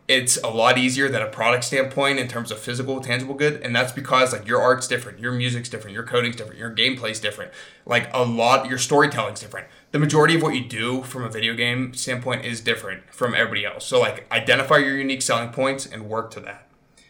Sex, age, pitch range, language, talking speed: male, 20-39, 110-130 Hz, English, 220 wpm